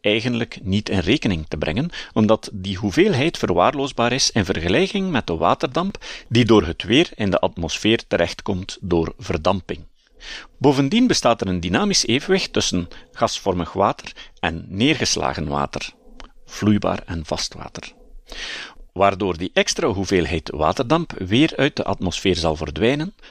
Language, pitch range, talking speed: Dutch, 90-125 Hz, 135 wpm